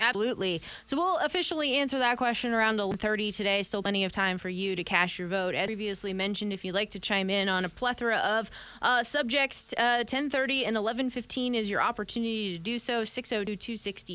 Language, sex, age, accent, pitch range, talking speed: English, female, 20-39, American, 205-245 Hz, 195 wpm